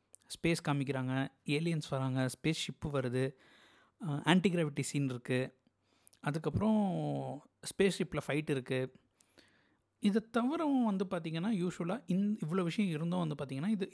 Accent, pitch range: native, 135-185 Hz